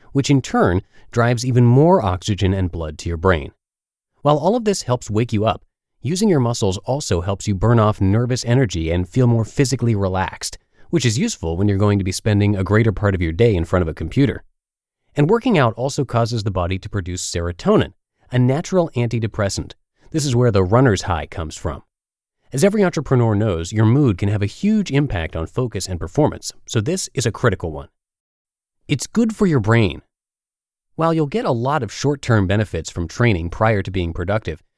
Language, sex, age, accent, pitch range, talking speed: English, male, 30-49, American, 95-135 Hz, 200 wpm